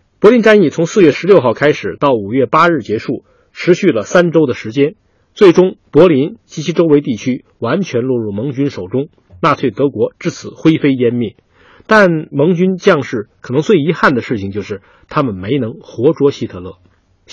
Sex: male